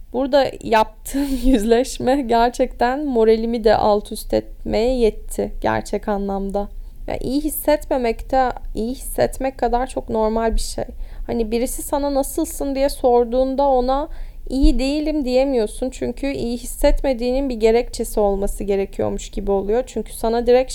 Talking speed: 125 wpm